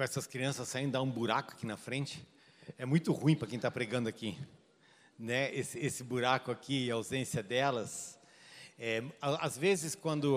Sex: male